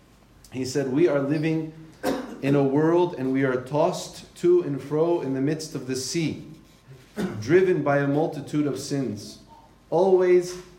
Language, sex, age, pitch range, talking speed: English, male, 40-59, 125-165 Hz, 155 wpm